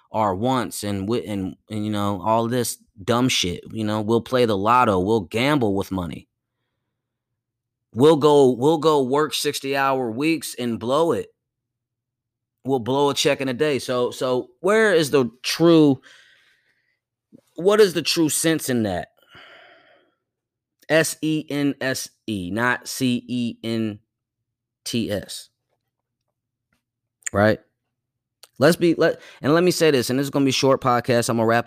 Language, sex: English, male